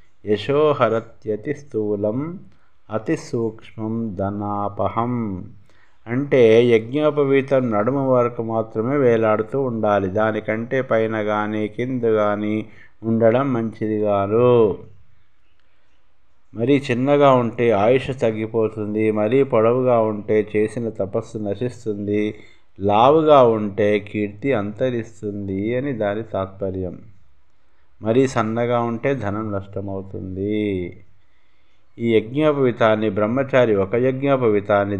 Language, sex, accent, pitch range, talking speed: Telugu, male, native, 100-120 Hz, 80 wpm